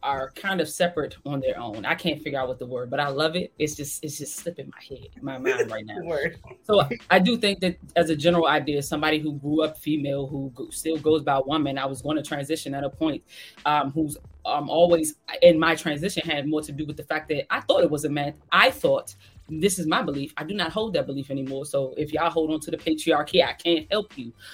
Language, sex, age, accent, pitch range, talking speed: English, female, 20-39, American, 150-195 Hz, 250 wpm